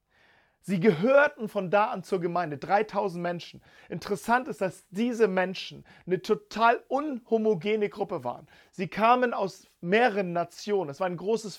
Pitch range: 185-225 Hz